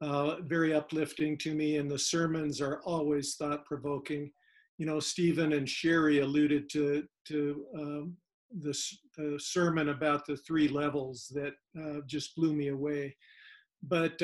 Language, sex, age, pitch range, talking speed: English, male, 50-69, 150-175 Hz, 145 wpm